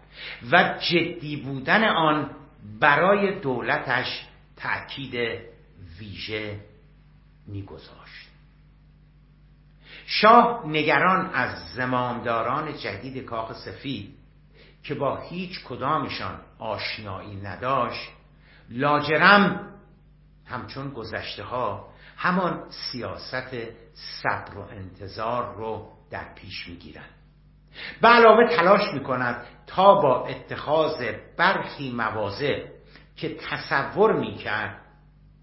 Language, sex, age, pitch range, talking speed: Persian, male, 60-79, 110-155 Hz, 80 wpm